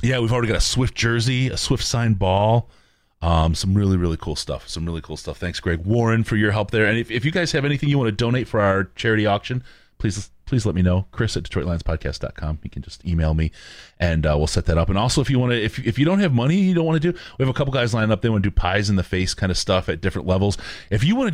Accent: American